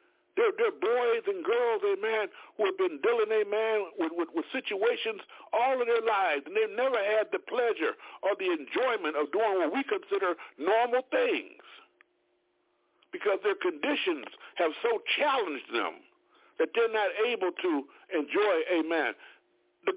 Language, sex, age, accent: Japanese, male, 60-79, American